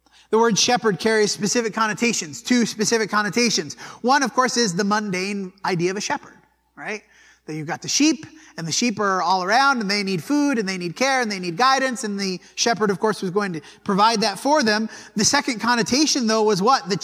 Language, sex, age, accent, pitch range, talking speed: English, male, 30-49, American, 205-255 Hz, 220 wpm